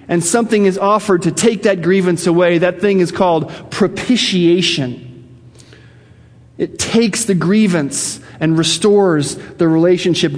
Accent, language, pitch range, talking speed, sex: American, English, 135-190 Hz, 125 wpm, male